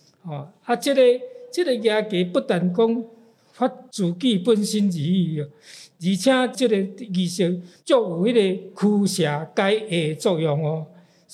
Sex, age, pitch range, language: male, 50-69, 165-215 Hz, Chinese